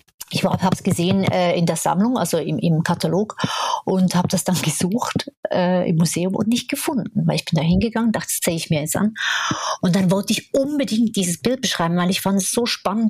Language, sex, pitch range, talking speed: German, female, 170-215 Hz, 225 wpm